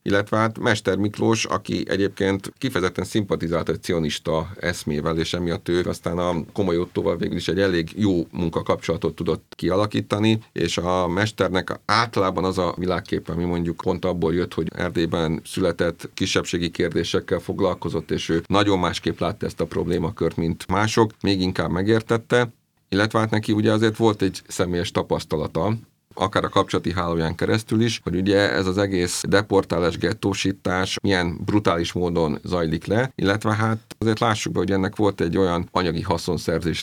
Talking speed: 155 wpm